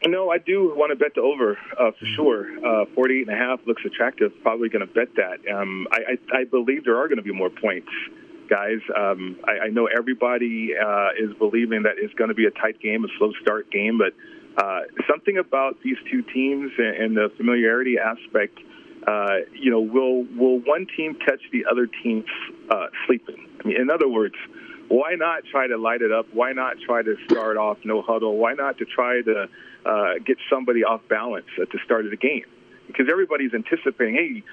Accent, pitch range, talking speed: American, 115-155 Hz, 205 wpm